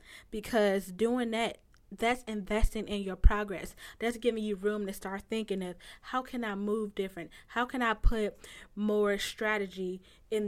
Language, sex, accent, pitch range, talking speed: English, female, American, 195-225 Hz, 160 wpm